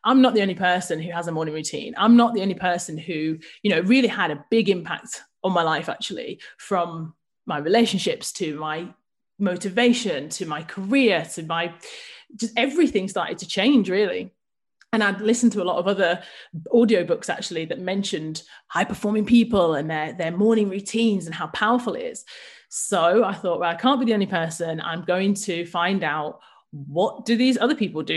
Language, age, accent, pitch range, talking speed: English, 30-49, British, 180-235 Hz, 190 wpm